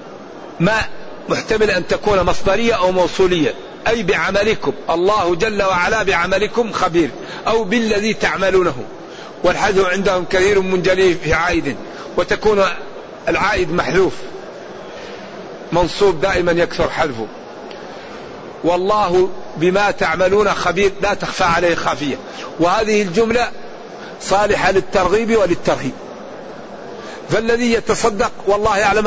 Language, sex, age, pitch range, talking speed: Arabic, male, 50-69, 185-220 Hz, 95 wpm